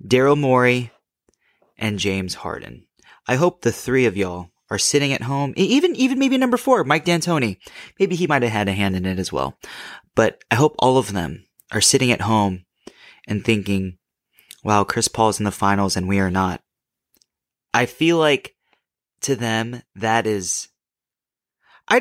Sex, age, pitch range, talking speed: male, 30-49, 110-175 Hz, 170 wpm